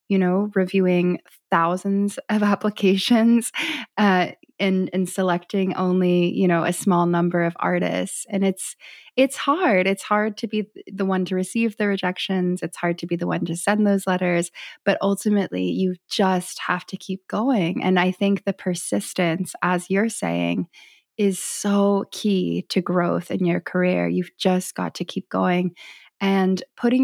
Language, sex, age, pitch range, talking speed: English, female, 20-39, 180-205 Hz, 165 wpm